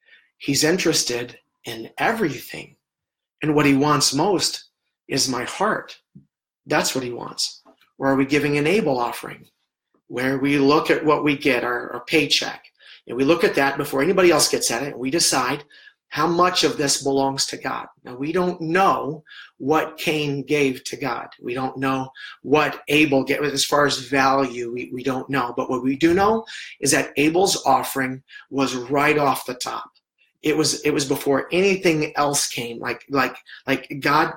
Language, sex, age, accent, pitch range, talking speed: English, male, 40-59, American, 130-150 Hz, 180 wpm